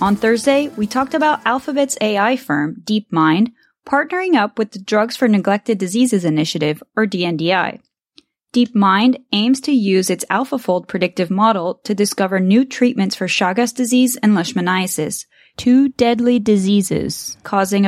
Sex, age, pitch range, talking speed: female, 20-39, 190-250 Hz, 140 wpm